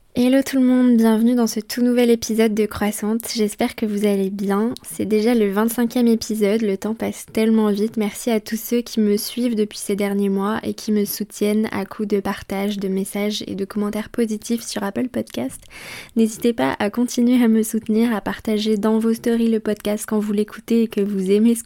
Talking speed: 215 wpm